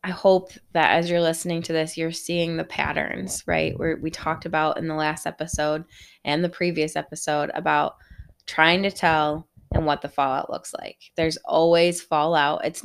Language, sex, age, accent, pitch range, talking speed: English, female, 20-39, American, 150-170 Hz, 180 wpm